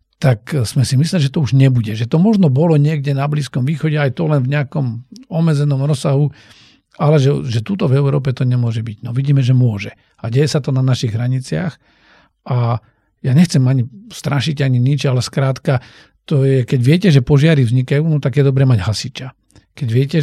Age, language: 50-69, Slovak